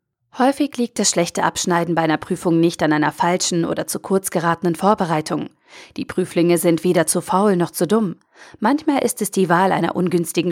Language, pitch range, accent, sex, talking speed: German, 170-215 Hz, German, female, 190 wpm